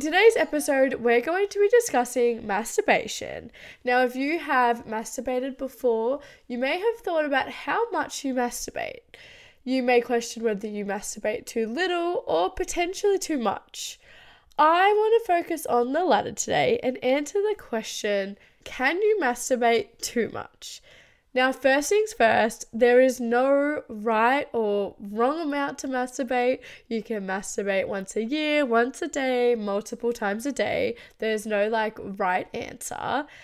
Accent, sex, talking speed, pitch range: Australian, female, 150 wpm, 225-290 Hz